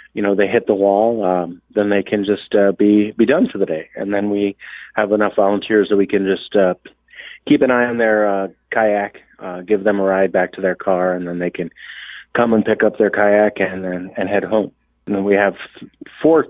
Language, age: English, 30-49